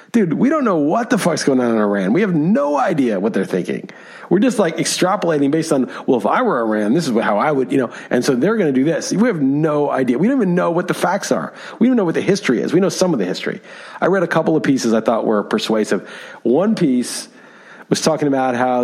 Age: 40-59